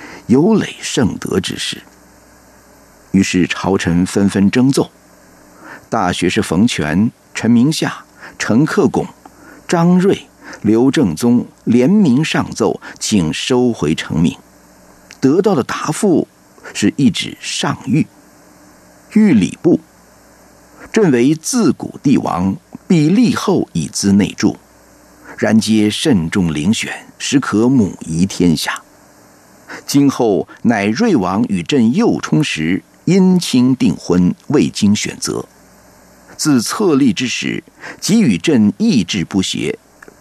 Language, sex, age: Chinese, male, 50-69